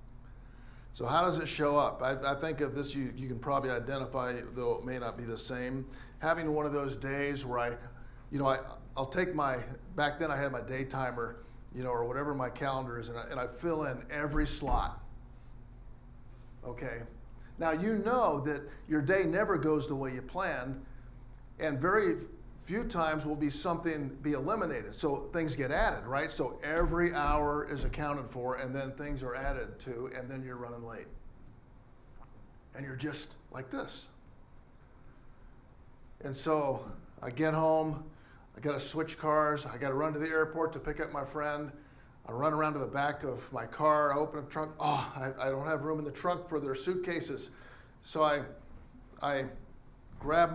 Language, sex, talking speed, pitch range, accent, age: English, male, 185 wpm, 125-150 Hz, American, 50-69